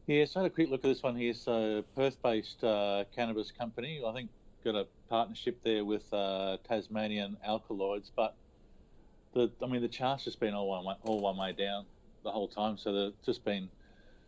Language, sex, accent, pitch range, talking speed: English, male, Australian, 100-115 Hz, 200 wpm